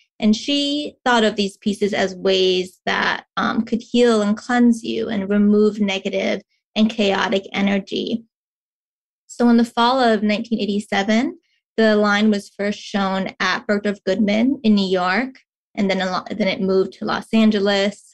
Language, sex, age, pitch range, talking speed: English, female, 20-39, 195-225 Hz, 150 wpm